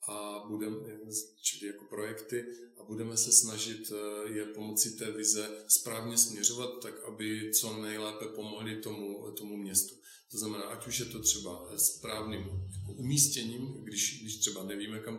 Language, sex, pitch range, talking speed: Czech, male, 100-110 Hz, 150 wpm